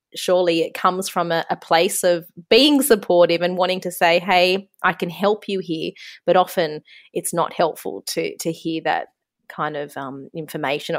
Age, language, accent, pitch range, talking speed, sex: 20-39, English, Australian, 150-185 Hz, 180 wpm, female